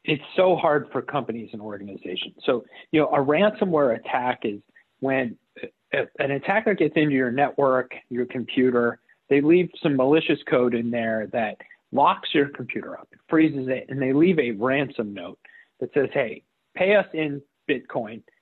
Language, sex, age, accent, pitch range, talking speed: English, male, 40-59, American, 120-150 Hz, 165 wpm